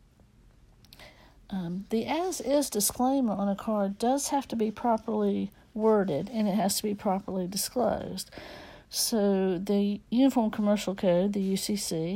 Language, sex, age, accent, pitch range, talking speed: English, female, 60-79, American, 185-220 Hz, 135 wpm